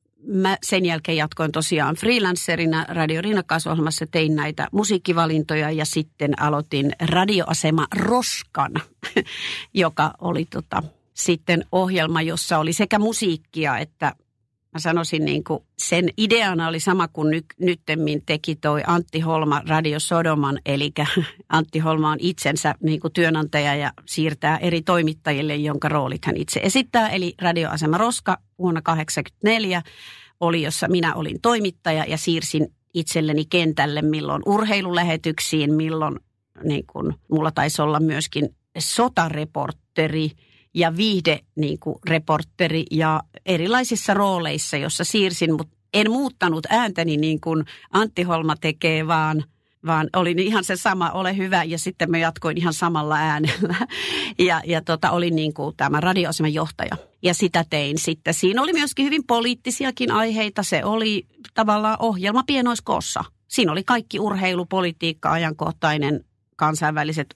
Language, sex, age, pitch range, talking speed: Finnish, female, 50-69, 155-185 Hz, 130 wpm